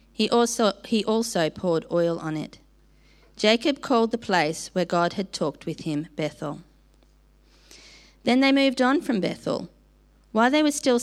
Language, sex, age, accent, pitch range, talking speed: English, female, 40-59, Australian, 170-225 Hz, 160 wpm